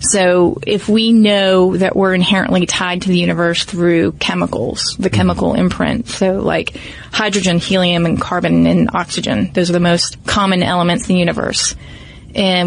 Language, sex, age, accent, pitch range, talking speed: English, female, 20-39, American, 180-205 Hz, 160 wpm